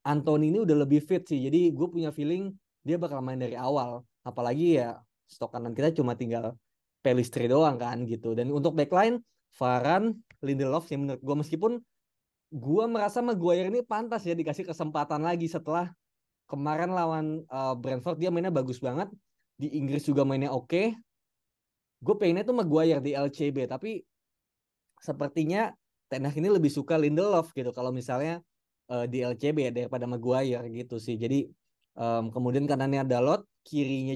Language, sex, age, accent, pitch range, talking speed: Indonesian, male, 20-39, native, 130-165 Hz, 155 wpm